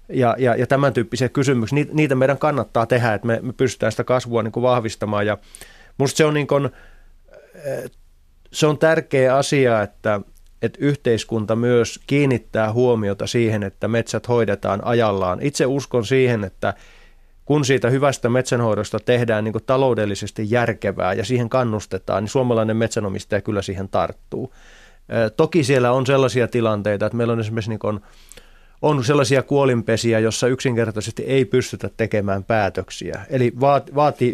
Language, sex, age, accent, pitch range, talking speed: Finnish, male, 30-49, native, 105-130 Hz, 130 wpm